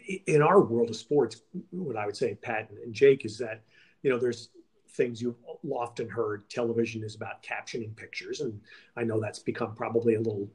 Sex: male